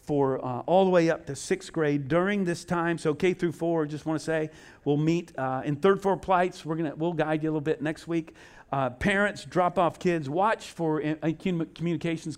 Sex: male